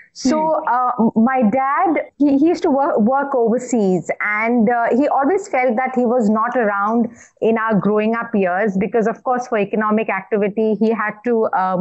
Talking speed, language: 185 wpm, English